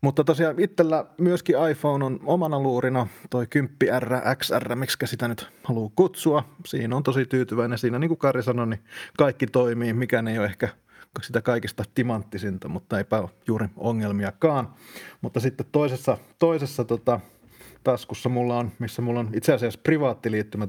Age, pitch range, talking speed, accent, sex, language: 30-49, 110-135 Hz, 155 wpm, native, male, Finnish